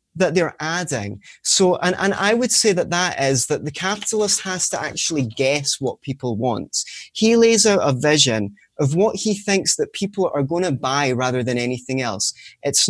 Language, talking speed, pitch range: English, 195 wpm, 135-180 Hz